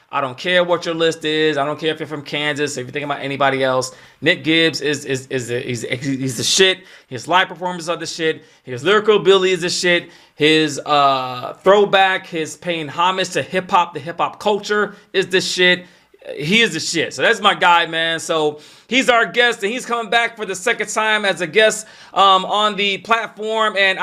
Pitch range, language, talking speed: 150-195 Hz, English, 220 wpm